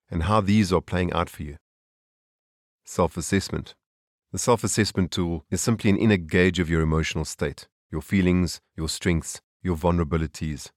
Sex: male